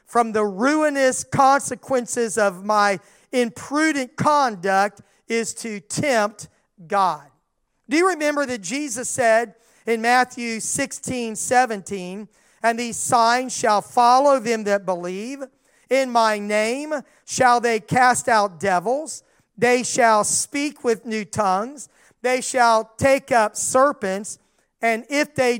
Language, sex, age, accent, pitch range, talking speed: English, male, 40-59, American, 210-260 Hz, 120 wpm